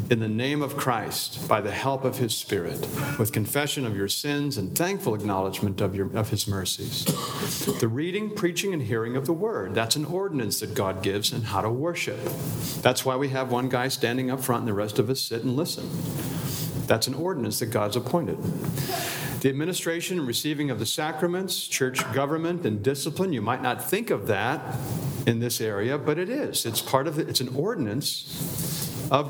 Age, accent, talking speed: 50-69, American, 195 wpm